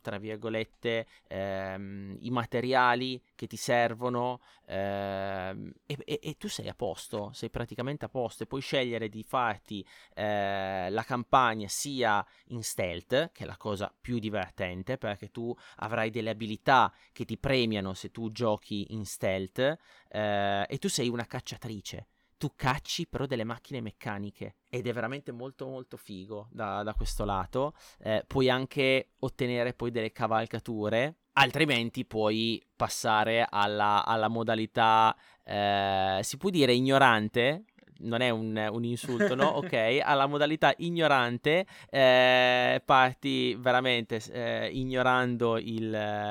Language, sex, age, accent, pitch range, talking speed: Italian, male, 30-49, native, 105-130 Hz, 135 wpm